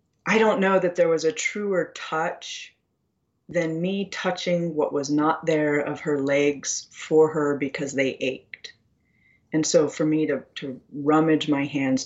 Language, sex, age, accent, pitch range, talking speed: English, female, 30-49, American, 140-165 Hz, 165 wpm